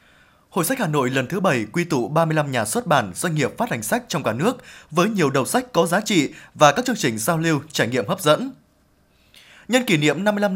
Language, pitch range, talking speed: Vietnamese, 145-195 Hz, 240 wpm